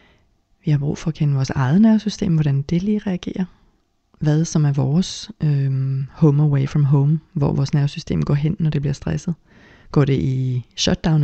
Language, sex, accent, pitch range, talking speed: Danish, female, native, 145-165 Hz, 180 wpm